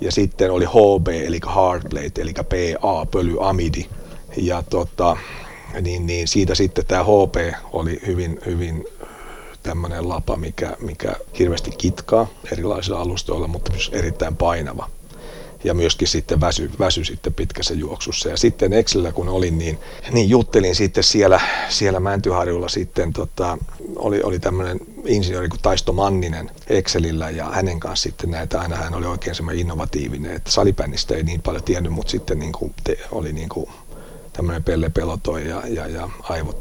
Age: 40-59